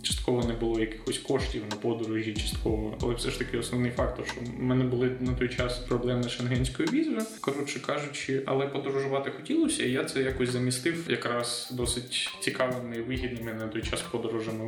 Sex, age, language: male, 20-39, Ukrainian